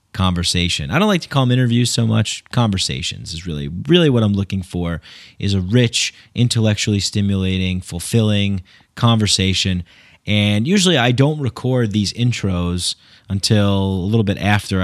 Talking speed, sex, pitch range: 150 wpm, male, 95-120 Hz